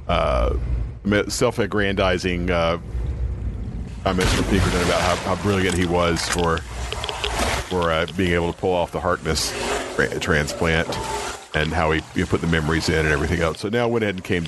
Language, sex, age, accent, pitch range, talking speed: English, male, 40-59, American, 80-95 Hz, 170 wpm